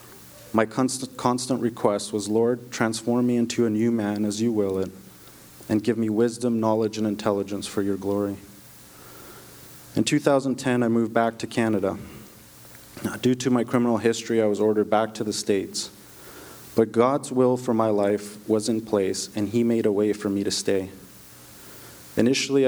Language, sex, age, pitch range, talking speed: English, male, 30-49, 100-115 Hz, 165 wpm